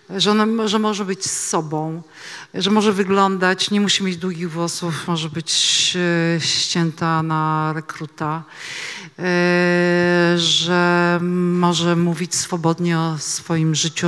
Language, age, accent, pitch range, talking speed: Polish, 40-59, native, 165-195 Hz, 125 wpm